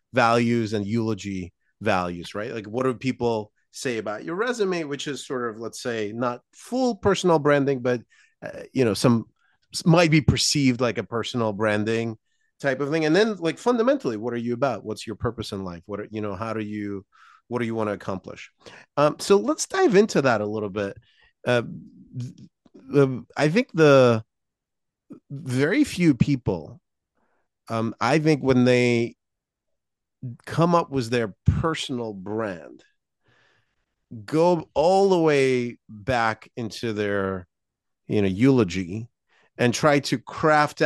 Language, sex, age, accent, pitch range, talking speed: English, male, 30-49, American, 110-145 Hz, 155 wpm